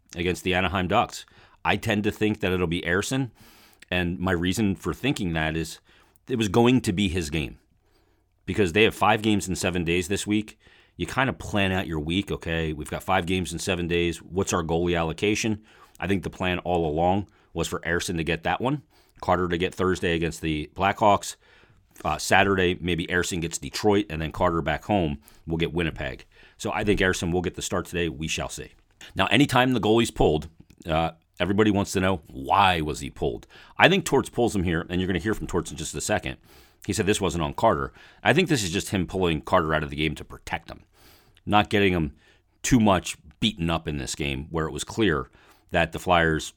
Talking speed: 220 wpm